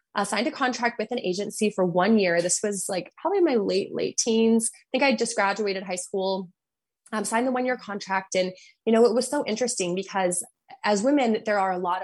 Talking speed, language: 230 wpm, English